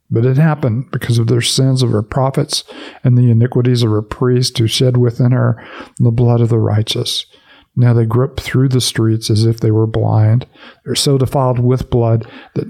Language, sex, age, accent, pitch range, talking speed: English, male, 50-69, American, 115-130 Hz, 200 wpm